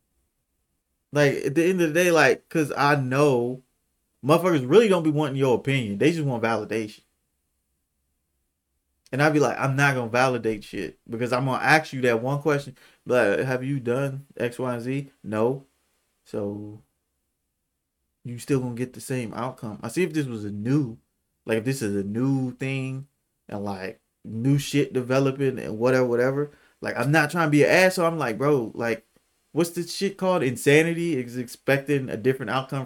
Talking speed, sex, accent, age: 190 wpm, male, American, 20-39